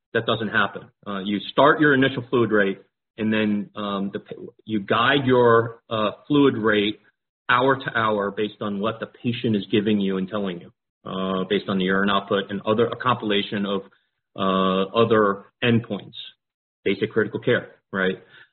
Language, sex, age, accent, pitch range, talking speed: English, male, 40-59, American, 100-120 Hz, 160 wpm